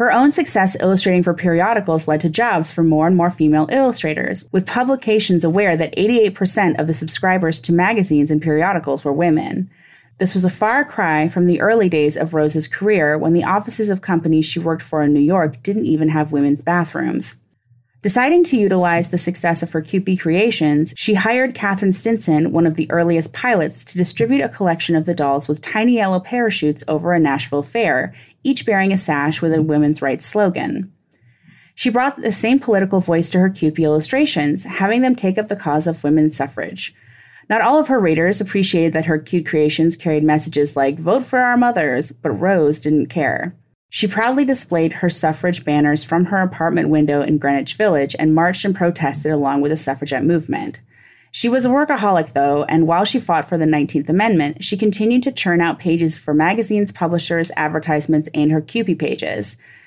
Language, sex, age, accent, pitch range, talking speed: English, female, 20-39, American, 155-200 Hz, 190 wpm